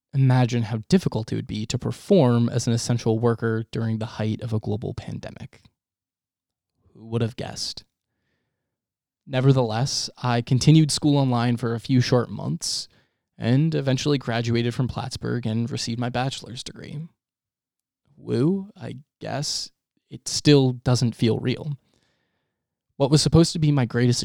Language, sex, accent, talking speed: English, male, American, 145 wpm